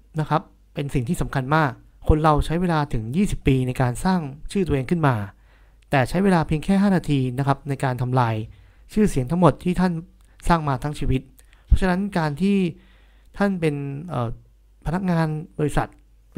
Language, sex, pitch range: Thai, male, 125-170 Hz